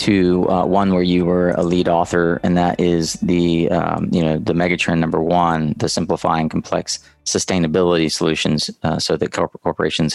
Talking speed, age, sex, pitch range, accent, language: 170 wpm, 30-49, male, 85-100 Hz, American, English